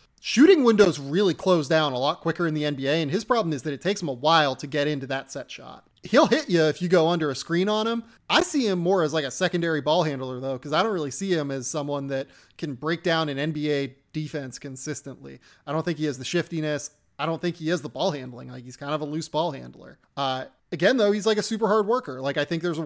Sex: male